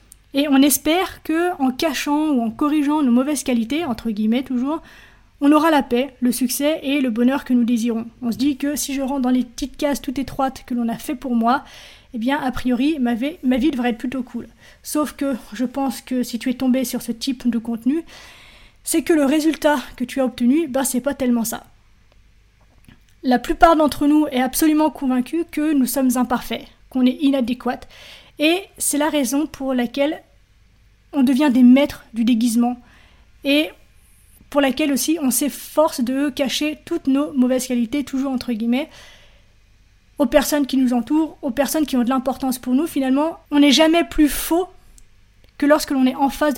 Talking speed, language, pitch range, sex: 195 wpm, French, 240-290 Hz, female